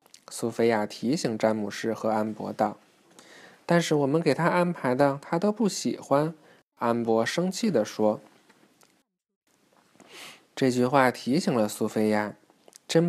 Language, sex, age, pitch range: Chinese, male, 20-39, 120-160 Hz